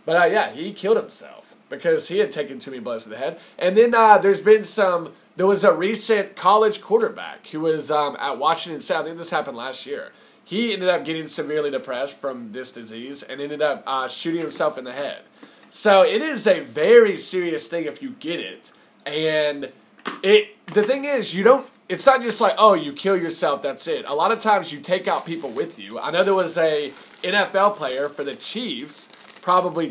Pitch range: 155-215 Hz